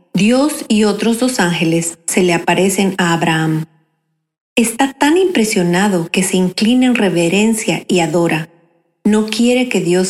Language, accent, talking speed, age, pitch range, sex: Spanish, Mexican, 145 wpm, 40-59, 175-225 Hz, female